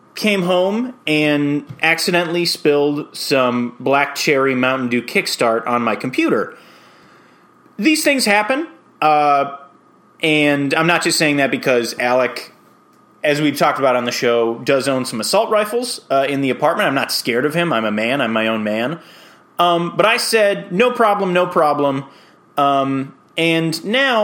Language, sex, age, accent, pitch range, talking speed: English, male, 30-49, American, 135-195 Hz, 160 wpm